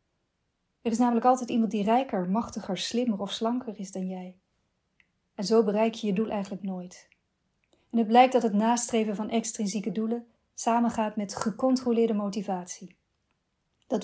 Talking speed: 155 wpm